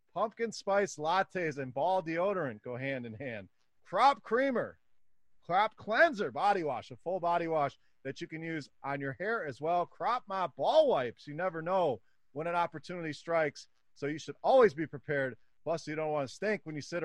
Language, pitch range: English, 140-195 Hz